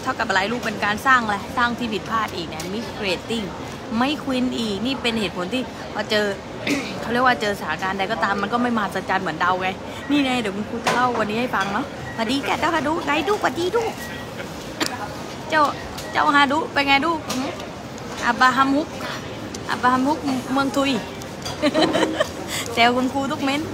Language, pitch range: English, 230-280 Hz